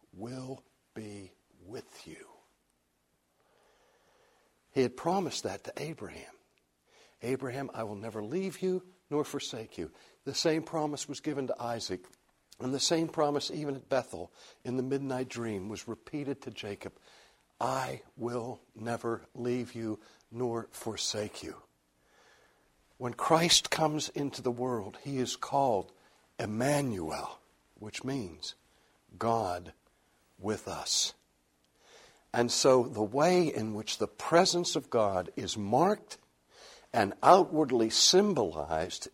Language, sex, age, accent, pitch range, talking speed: English, male, 60-79, American, 105-145 Hz, 120 wpm